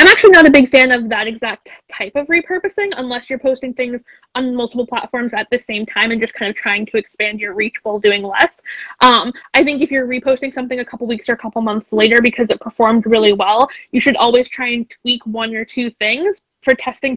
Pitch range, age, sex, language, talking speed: 235-290 Hz, 10-29, female, English, 235 wpm